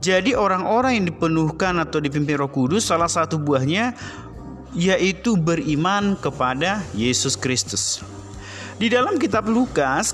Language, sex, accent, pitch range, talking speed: Indonesian, male, native, 135-190 Hz, 120 wpm